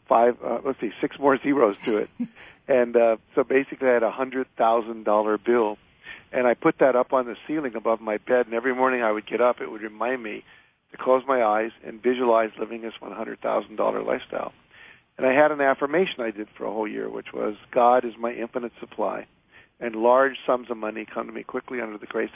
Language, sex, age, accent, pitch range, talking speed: English, male, 50-69, American, 115-130 Hz, 215 wpm